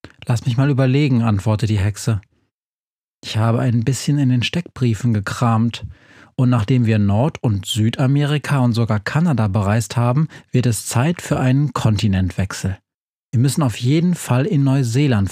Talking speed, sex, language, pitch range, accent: 155 wpm, male, German, 110-130 Hz, German